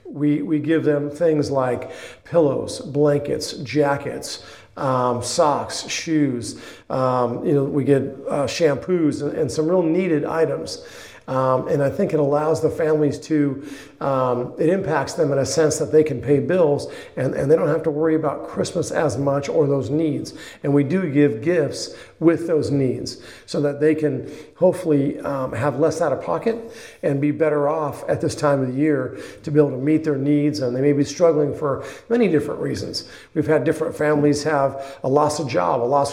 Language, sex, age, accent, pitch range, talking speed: English, male, 50-69, American, 140-160 Hz, 190 wpm